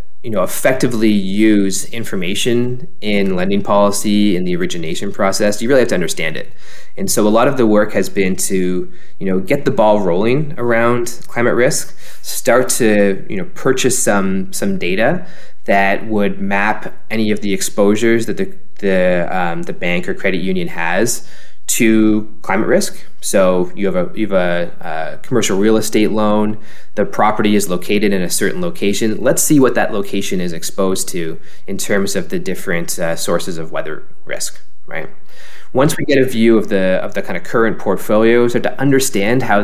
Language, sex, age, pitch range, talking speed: English, male, 20-39, 95-115 Hz, 180 wpm